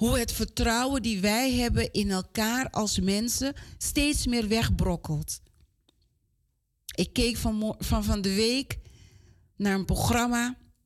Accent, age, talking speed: Dutch, 40-59, 120 wpm